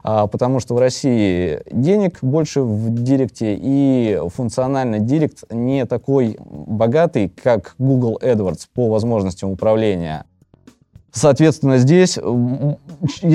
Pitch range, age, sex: 115-145 Hz, 20-39, male